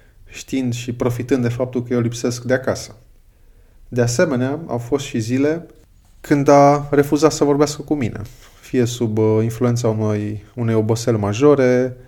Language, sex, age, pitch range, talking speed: Romanian, male, 20-39, 110-135 Hz, 150 wpm